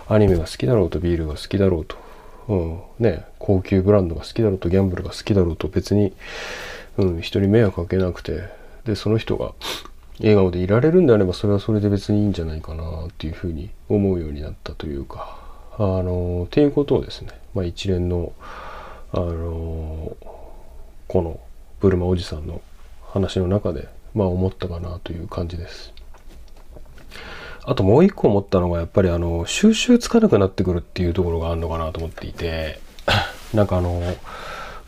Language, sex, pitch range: Japanese, male, 85-110 Hz